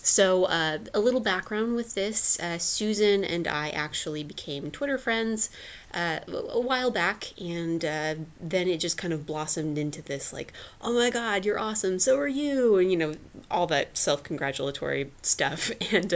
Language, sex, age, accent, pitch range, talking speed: English, female, 20-39, American, 150-190 Hz, 175 wpm